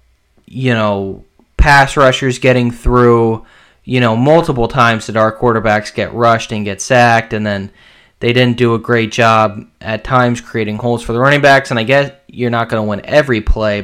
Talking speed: 190 wpm